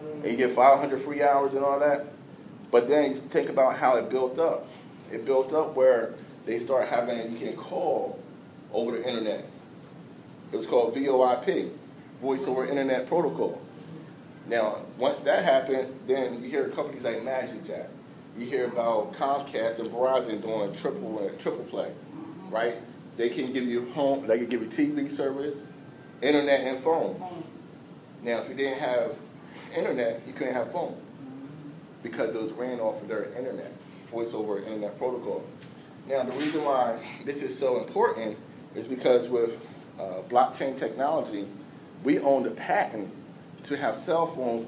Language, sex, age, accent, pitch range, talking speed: English, male, 30-49, American, 125-145 Hz, 155 wpm